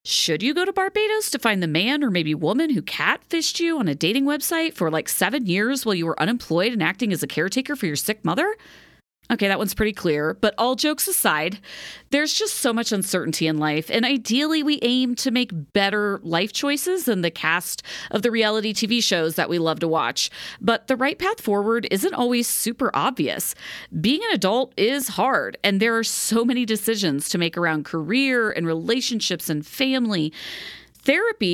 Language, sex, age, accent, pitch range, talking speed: English, female, 40-59, American, 175-250 Hz, 195 wpm